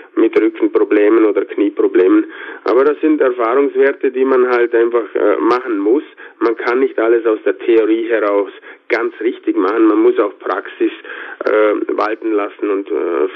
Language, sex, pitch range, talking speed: German, male, 355-415 Hz, 155 wpm